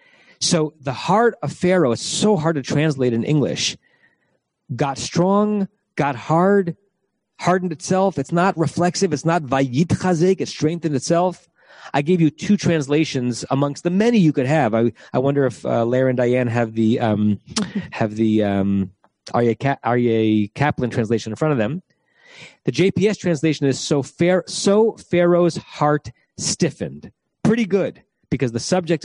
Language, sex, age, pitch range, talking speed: English, male, 30-49, 125-175 Hz, 155 wpm